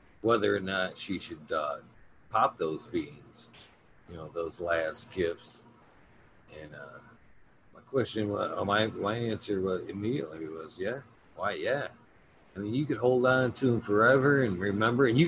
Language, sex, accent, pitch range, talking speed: English, male, American, 95-125 Hz, 165 wpm